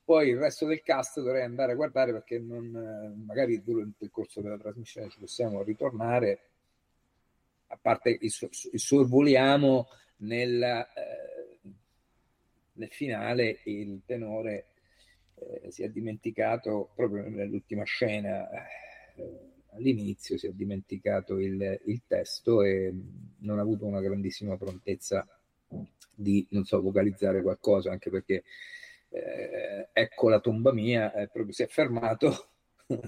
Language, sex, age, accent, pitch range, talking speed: Italian, male, 50-69, native, 100-125 Hz, 120 wpm